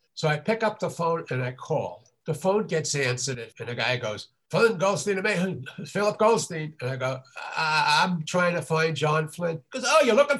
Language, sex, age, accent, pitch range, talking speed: English, male, 60-79, American, 125-170 Hz, 190 wpm